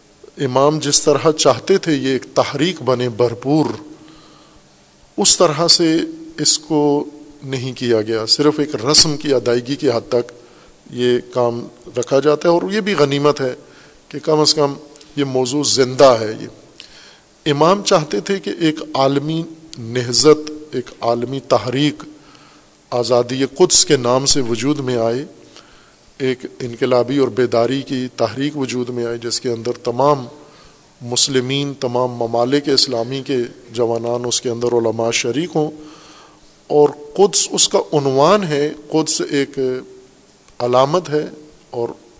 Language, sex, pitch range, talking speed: Urdu, male, 125-150 Hz, 140 wpm